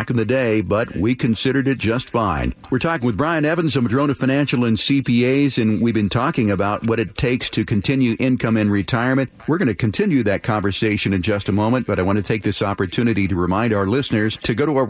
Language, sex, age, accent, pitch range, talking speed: English, male, 50-69, American, 105-130 Hz, 230 wpm